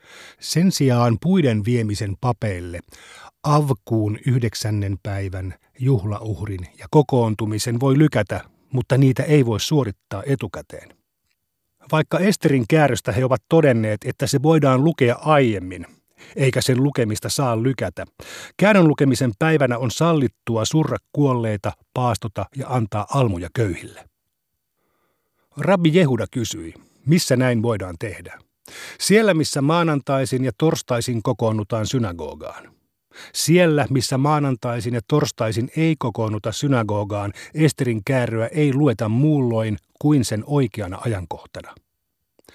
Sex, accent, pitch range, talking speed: male, native, 110-145 Hz, 110 wpm